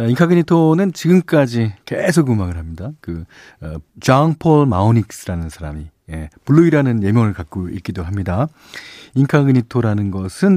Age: 40-59